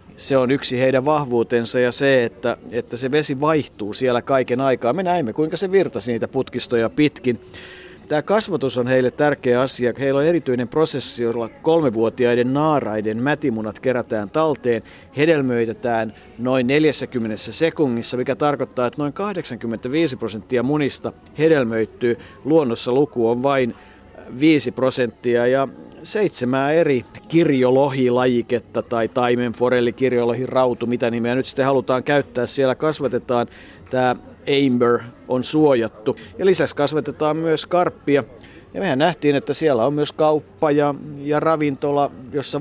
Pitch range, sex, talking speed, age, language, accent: 120-150 Hz, male, 130 wpm, 50-69, Finnish, native